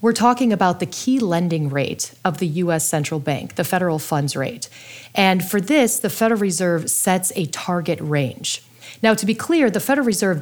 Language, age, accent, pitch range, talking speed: English, 30-49, American, 155-200 Hz, 190 wpm